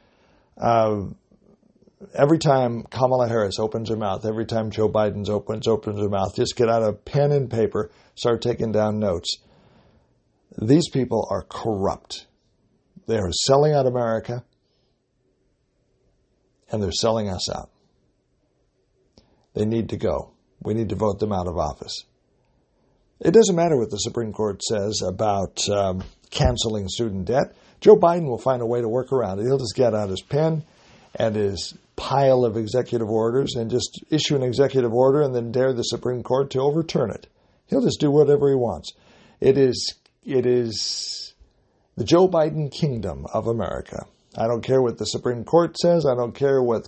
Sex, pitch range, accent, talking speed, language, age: male, 110-135 Hz, American, 170 wpm, English, 60-79